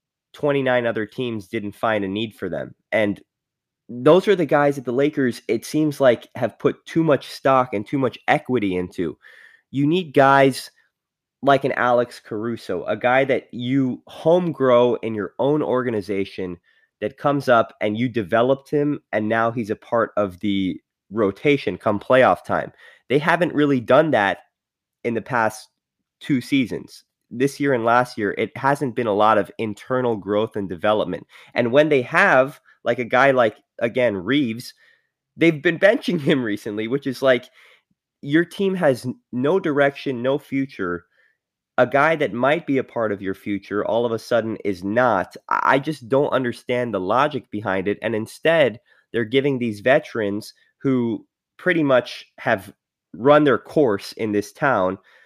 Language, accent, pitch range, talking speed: English, American, 110-140 Hz, 170 wpm